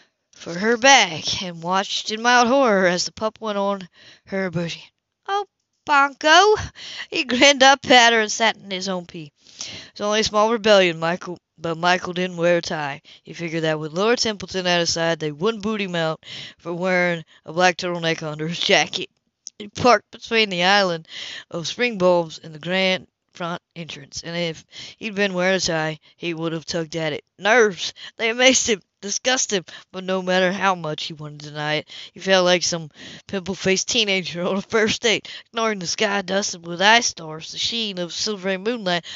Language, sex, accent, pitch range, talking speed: English, female, American, 170-220 Hz, 195 wpm